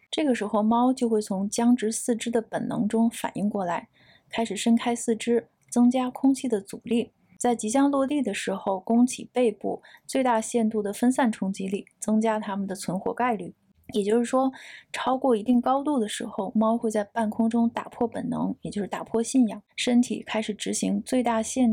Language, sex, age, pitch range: Chinese, female, 20-39, 215-245 Hz